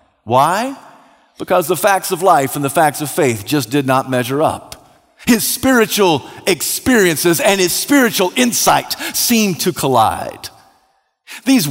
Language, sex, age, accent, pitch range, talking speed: English, male, 50-69, American, 145-215 Hz, 140 wpm